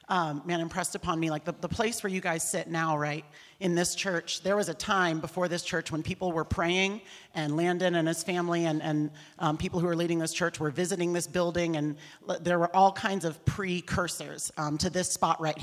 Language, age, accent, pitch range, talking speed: English, 40-59, American, 165-195 Hz, 230 wpm